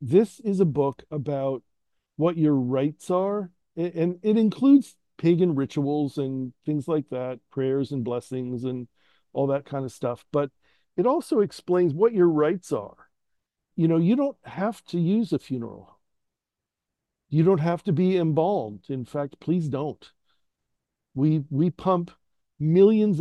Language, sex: English, male